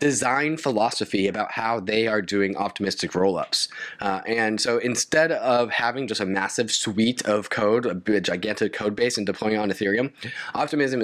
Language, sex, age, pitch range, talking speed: English, male, 20-39, 105-125 Hz, 170 wpm